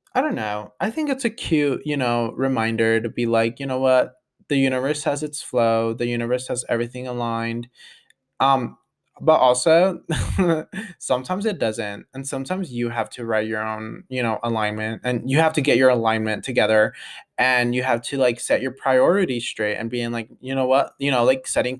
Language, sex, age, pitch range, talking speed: English, male, 20-39, 120-155 Hz, 195 wpm